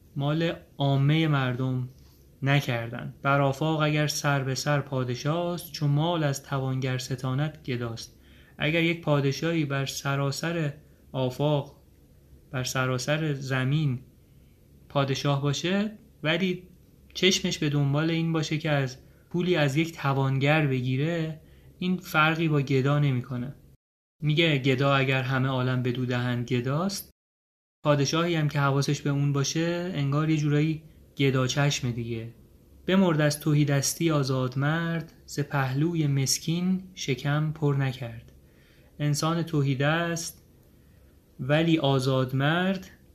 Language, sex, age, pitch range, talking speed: Persian, male, 30-49, 130-155 Hz, 115 wpm